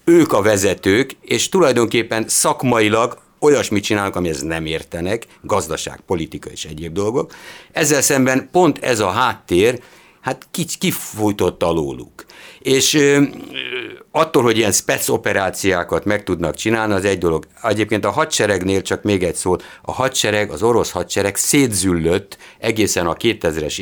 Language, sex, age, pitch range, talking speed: Hungarian, male, 60-79, 85-120 Hz, 135 wpm